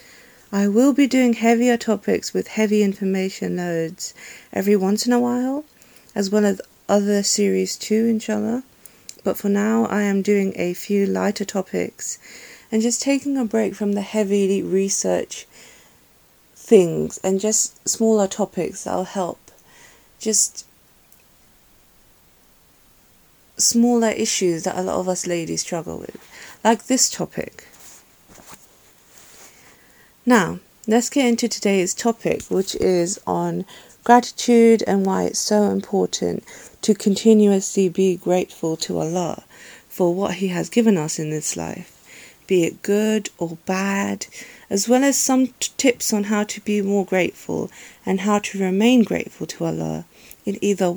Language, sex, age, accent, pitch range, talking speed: English, female, 40-59, British, 190-225 Hz, 140 wpm